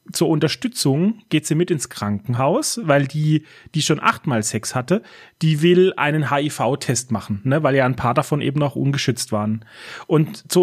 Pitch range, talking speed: 135-180 Hz, 175 wpm